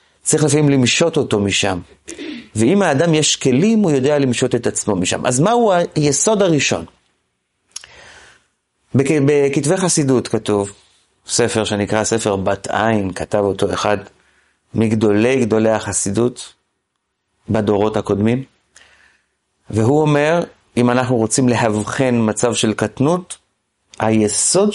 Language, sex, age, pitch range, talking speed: Hebrew, male, 30-49, 105-135 Hz, 110 wpm